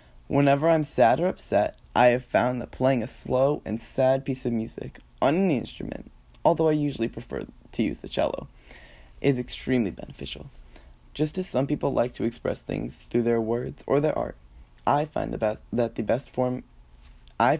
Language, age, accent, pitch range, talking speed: English, 20-39, American, 105-135 Hz, 185 wpm